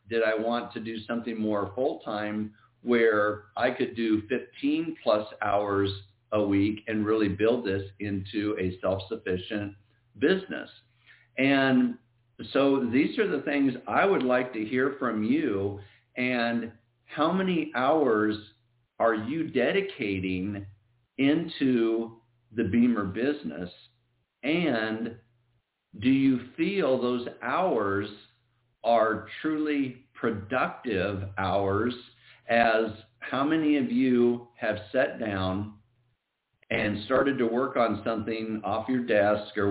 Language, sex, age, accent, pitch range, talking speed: English, male, 50-69, American, 105-125 Hz, 115 wpm